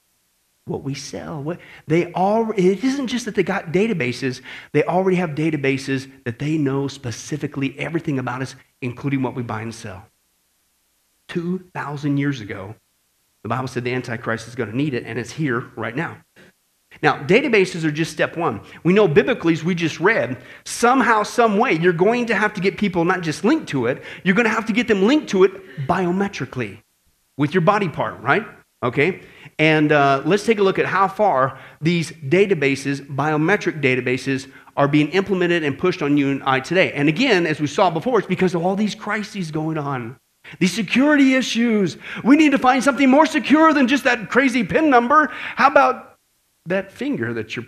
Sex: male